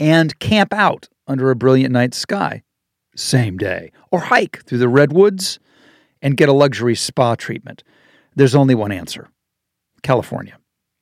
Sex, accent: male, American